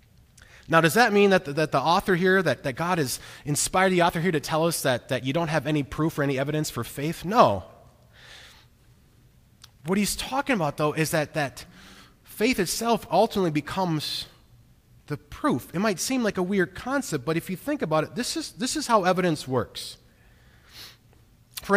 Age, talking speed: 30-49, 190 wpm